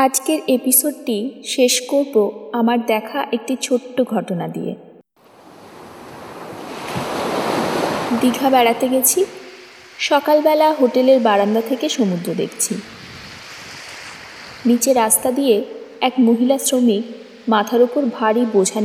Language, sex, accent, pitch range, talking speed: English, female, Indian, 225-275 Hz, 90 wpm